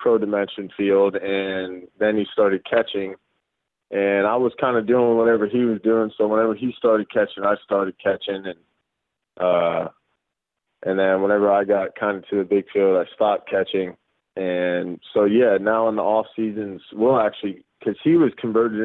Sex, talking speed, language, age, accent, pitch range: male, 175 wpm, English, 20-39, American, 95-115 Hz